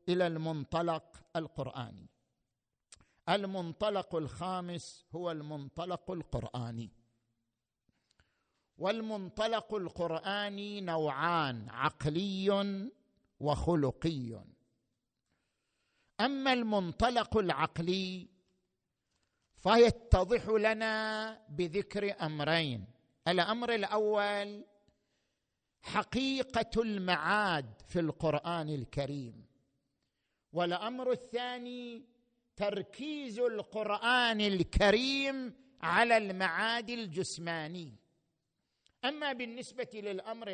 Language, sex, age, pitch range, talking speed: Arabic, male, 50-69, 160-225 Hz, 55 wpm